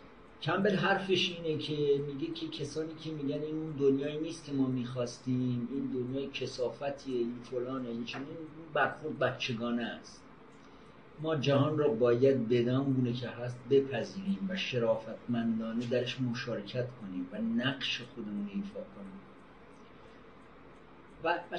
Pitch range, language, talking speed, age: 125-170 Hz, Persian, 120 wpm, 50-69